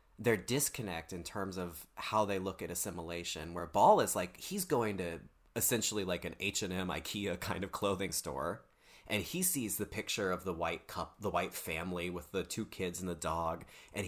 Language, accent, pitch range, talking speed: English, American, 85-115 Hz, 195 wpm